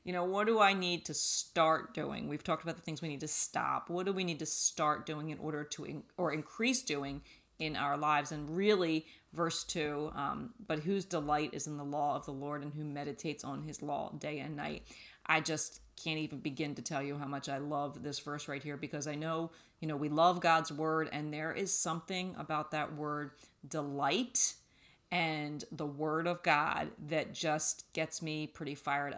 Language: English